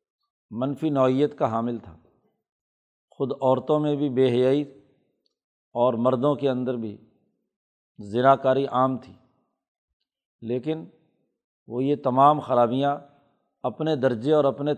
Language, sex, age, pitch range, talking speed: Urdu, male, 50-69, 120-145 Hz, 115 wpm